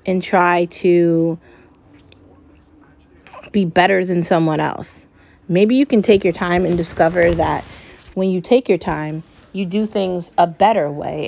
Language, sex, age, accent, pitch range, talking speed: English, female, 30-49, American, 170-195 Hz, 150 wpm